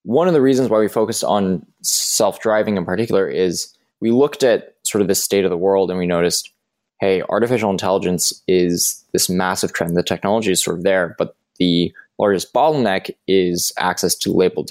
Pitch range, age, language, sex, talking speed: 90-105 Hz, 20-39, English, male, 190 wpm